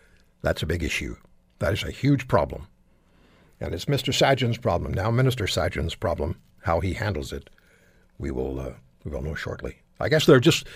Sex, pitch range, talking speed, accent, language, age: male, 105-160 Hz, 185 wpm, American, English, 60-79